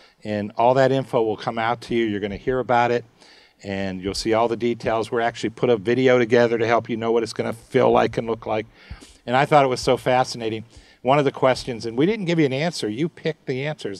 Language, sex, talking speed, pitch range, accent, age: English, male, 265 wpm, 105-130 Hz, American, 50-69